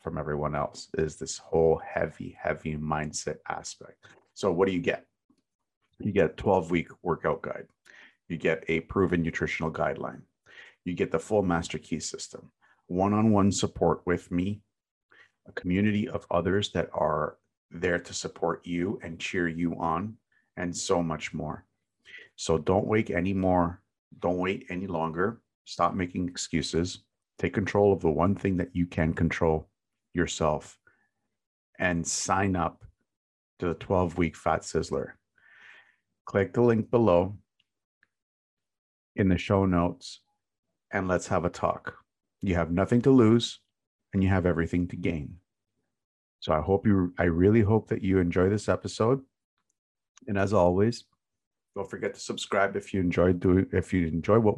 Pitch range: 85-100 Hz